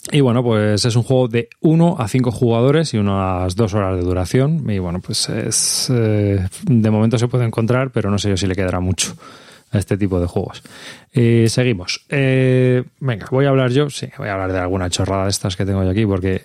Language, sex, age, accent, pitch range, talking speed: Spanish, male, 20-39, Spanish, 105-130 Hz, 225 wpm